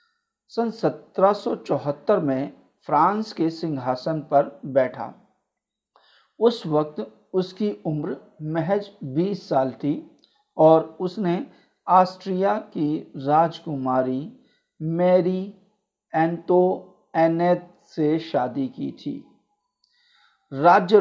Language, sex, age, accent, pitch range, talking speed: Hindi, male, 50-69, native, 145-190 Hz, 85 wpm